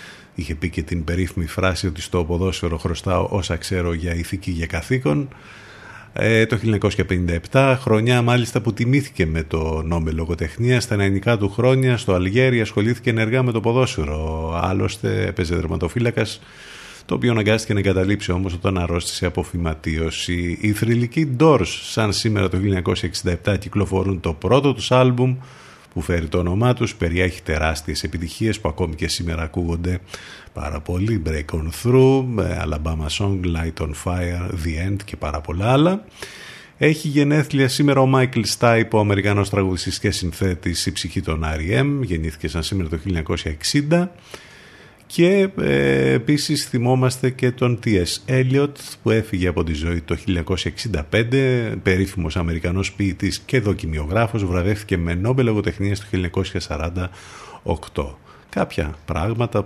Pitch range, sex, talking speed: 85-115 Hz, male, 140 wpm